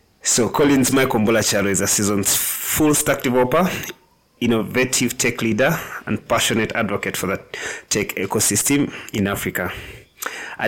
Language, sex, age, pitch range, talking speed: English, male, 30-49, 100-125 Hz, 130 wpm